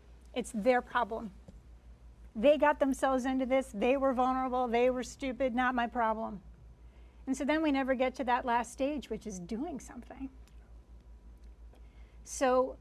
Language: English